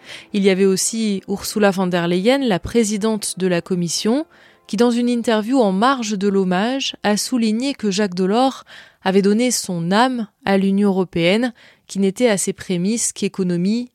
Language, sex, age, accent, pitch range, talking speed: French, female, 20-39, French, 185-235 Hz, 170 wpm